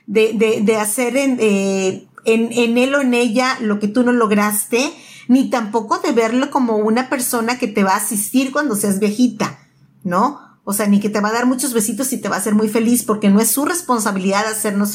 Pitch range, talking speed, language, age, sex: 210-265 Hz, 215 wpm, Spanish, 40-59, female